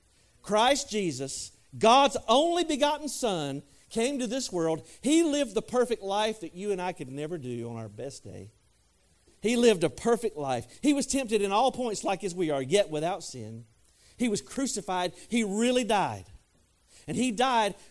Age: 40-59